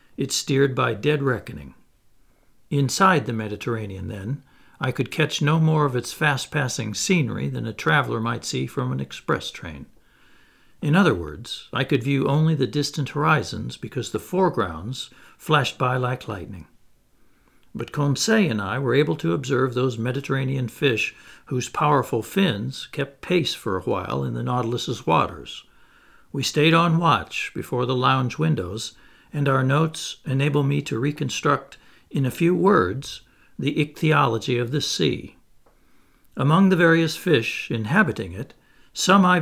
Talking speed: 150 wpm